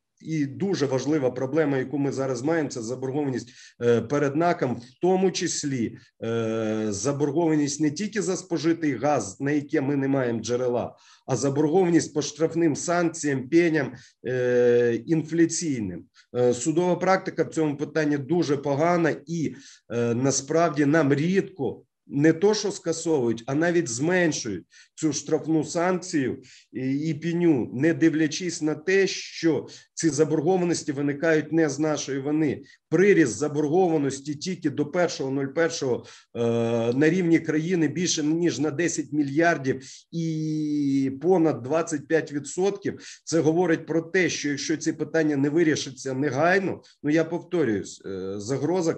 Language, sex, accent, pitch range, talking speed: Ukrainian, male, native, 135-165 Hz, 125 wpm